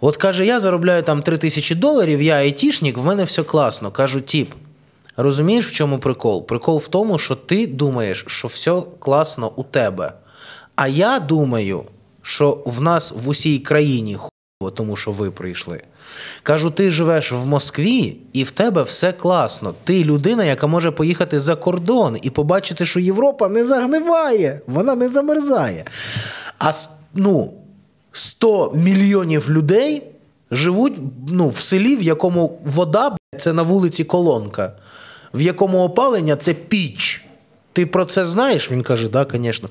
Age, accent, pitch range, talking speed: 20-39, native, 135-190 Hz, 155 wpm